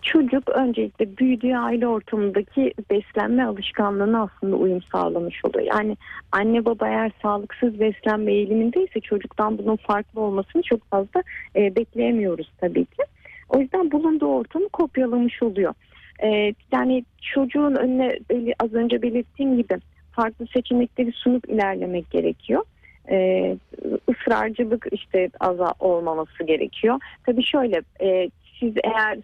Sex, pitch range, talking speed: female, 205-255 Hz, 110 wpm